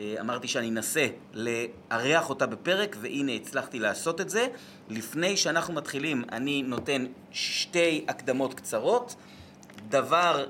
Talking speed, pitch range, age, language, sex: 115 wpm, 120-185 Hz, 30-49, Hebrew, male